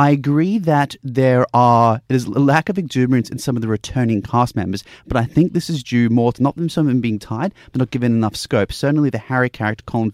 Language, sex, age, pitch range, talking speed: English, male, 30-49, 110-140 Hz, 255 wpm